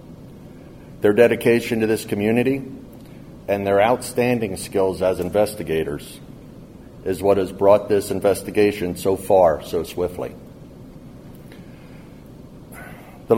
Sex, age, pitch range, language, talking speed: male, 50-69, 95-115 Hz, English, 100 wpm